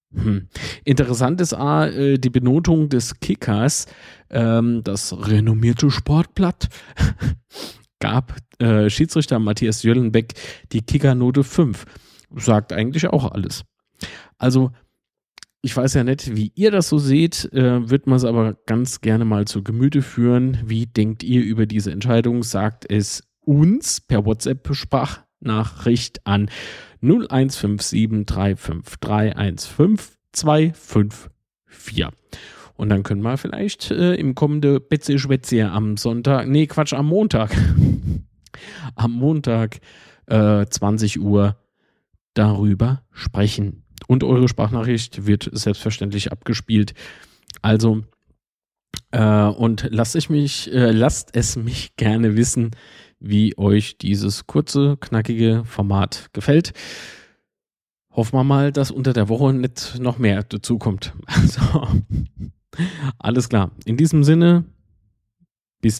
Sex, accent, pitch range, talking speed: male, German, 105-135 Hz, 115 wpm